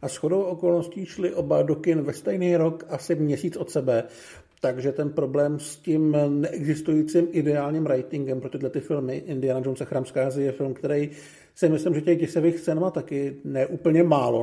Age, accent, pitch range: 50-69, native, 140-170 Hz